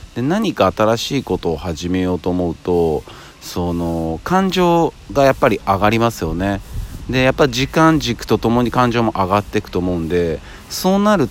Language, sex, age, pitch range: Japanese, male, 40-59, 90-125 Hz